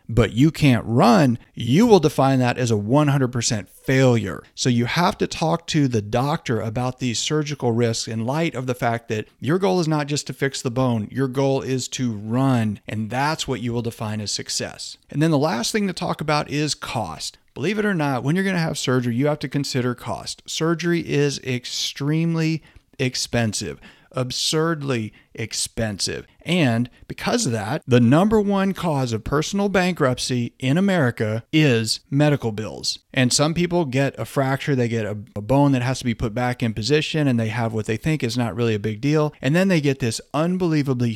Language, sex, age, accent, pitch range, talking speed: English, male, 40-59, American, 120-150 Hz, 200 wpm